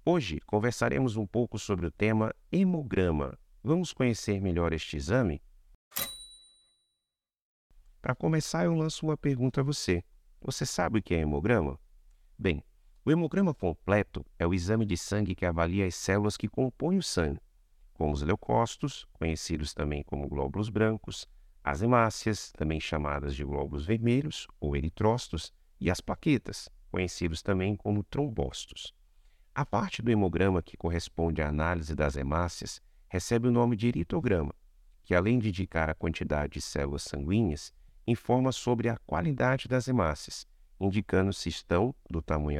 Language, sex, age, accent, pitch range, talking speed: Portuguese, male, 50-69, Brazilian, 85-110 Hz, 145 wpm